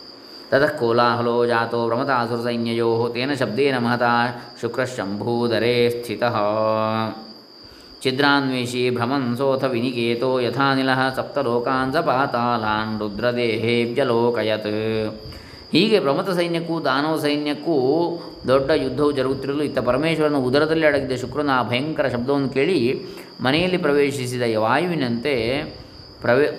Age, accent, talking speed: 20-39, native, 85 wpm